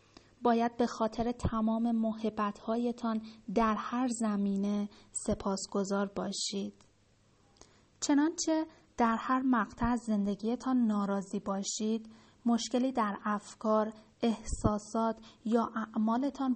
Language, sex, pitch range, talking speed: Persian, female, 210-245 Hz, 85 wpm